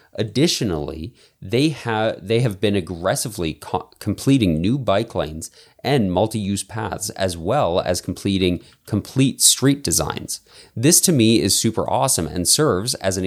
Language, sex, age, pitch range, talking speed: English, male, 30-49, 90-120 Hz, 135 wpm